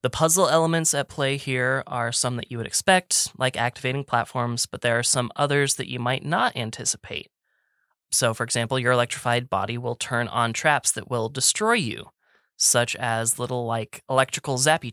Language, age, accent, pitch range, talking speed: English, 20-39, American, 115-135 Hz, 180 wpm